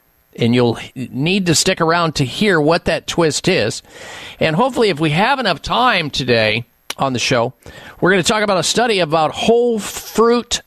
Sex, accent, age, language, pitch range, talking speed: male, American, 50-69, English, 130-170 Hz, 185 wpm